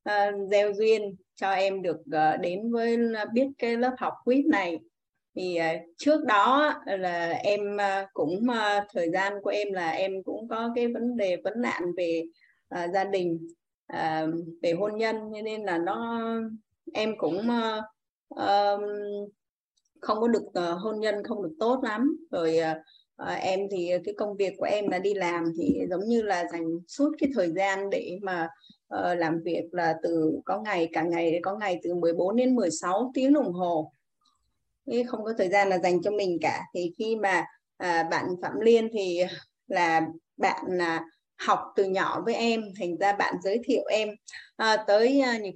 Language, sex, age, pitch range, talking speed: Vietnamese, female, 20-39, 175-230 Hz, 170 wpm